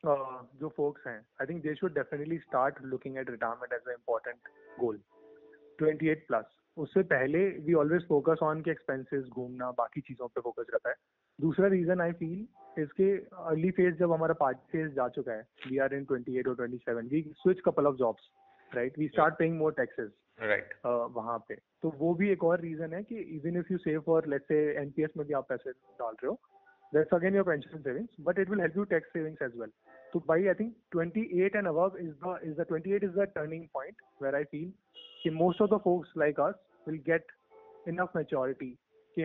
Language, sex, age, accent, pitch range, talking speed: Hindi, male, 30-49, native, 140-175 Hz, 180 wpm